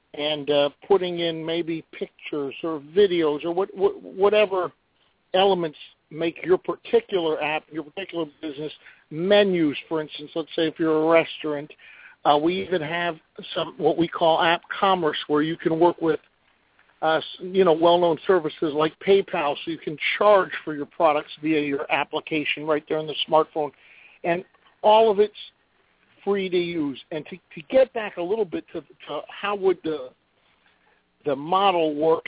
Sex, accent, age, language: male, American, 50-69, English